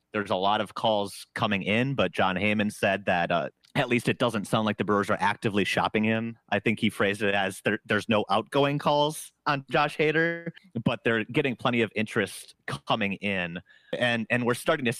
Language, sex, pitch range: English, male, 95-125 Hz